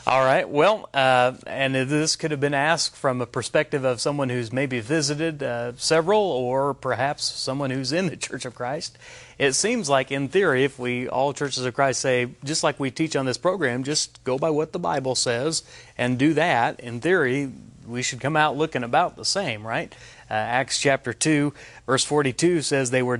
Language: English